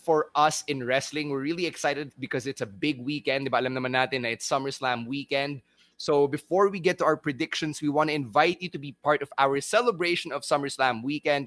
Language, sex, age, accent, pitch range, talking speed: English, male, 20-39, Filipino, 130-160 Hz, 190 wpm